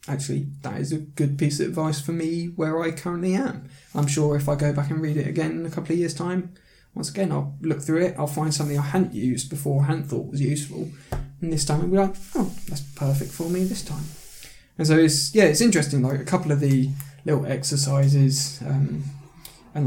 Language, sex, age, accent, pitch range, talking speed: English, male, 20-39, British, 135-155 Hz, 225 wpm